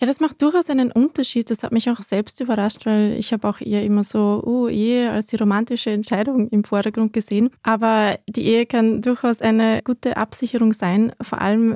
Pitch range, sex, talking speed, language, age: 210-235 Hz, female, 200 wpm, German, 20-39